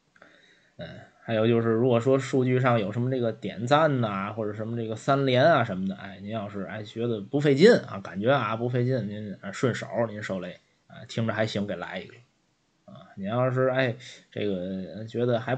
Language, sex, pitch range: Chinese, male, 100-130 Hz